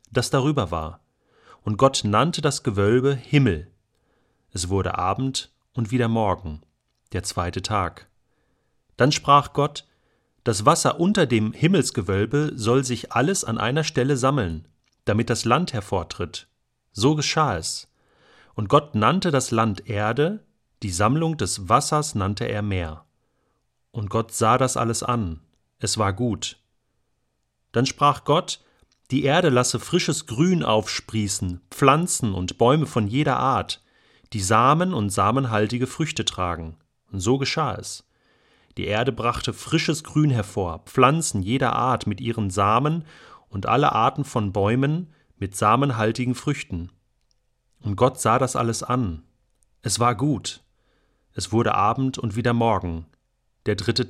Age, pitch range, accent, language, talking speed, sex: 40-59, 105-135 Hz, German, German, 140 wpm, male